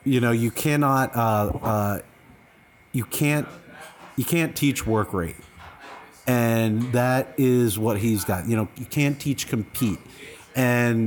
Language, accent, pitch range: English, American, 115-140 Hz